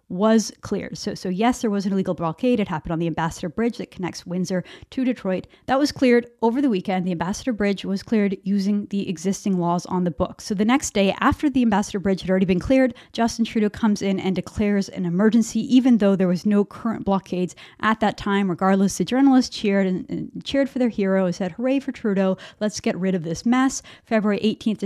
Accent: American